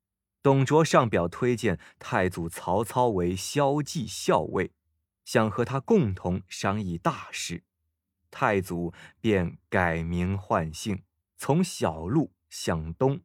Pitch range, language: 85-135 Hz, Chinese